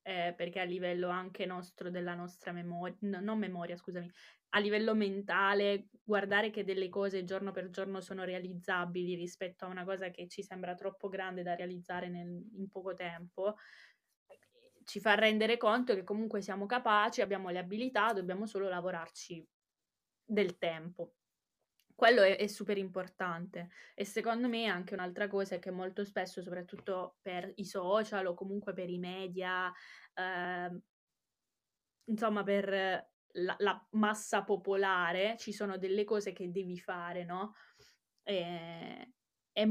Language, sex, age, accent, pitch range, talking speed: Italian, female, 20-39, native, 180-205 Hz, 140 wpm